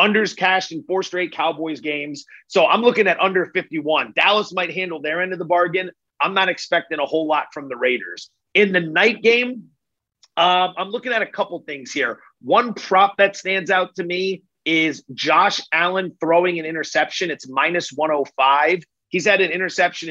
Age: 30-49